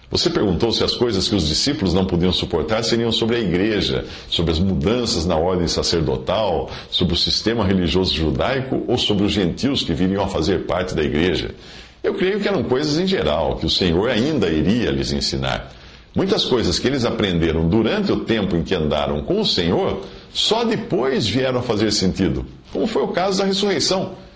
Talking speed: 190 wpm